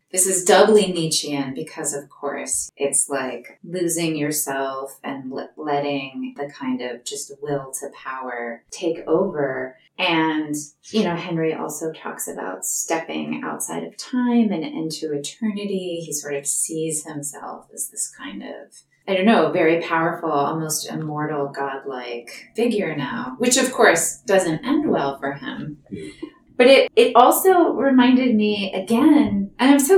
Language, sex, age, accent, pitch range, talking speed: English, female, 30-49, American, 145-210 Hz, 145 wpm